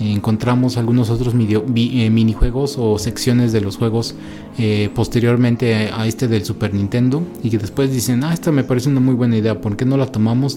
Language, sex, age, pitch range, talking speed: Spanish, male, 30-49, 110-125 Hz, 195 wpm